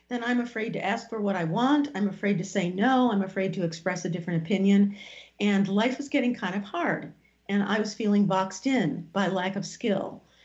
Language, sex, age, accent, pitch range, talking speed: English, female, 50-69, American, 180-225 Hz, 220 wpm